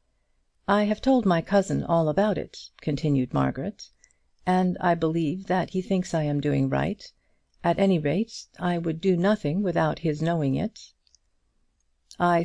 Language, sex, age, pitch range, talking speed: English, female, 50-69, 145-185 Hz, 155 wpm